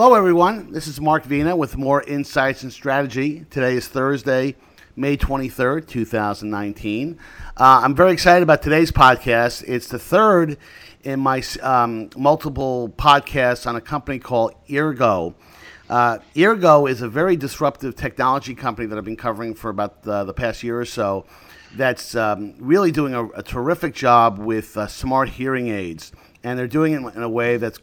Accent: American